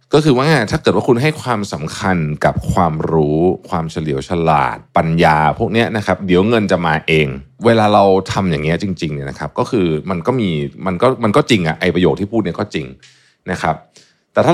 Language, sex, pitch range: Thai, male, 80-110 Hz